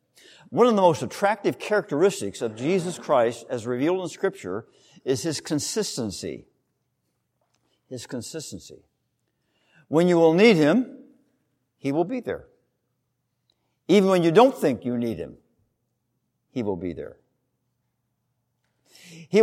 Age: 60-79